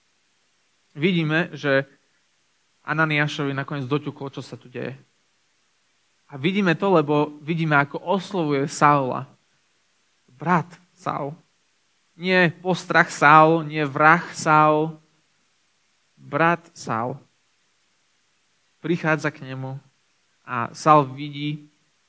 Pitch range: 140-165 Hz